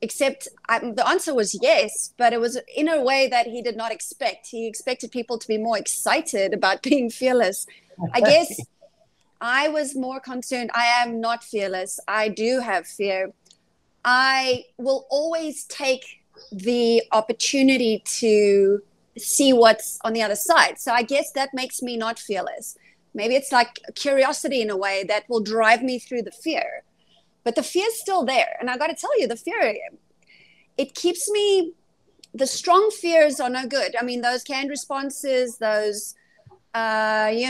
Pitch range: 225-280 Hz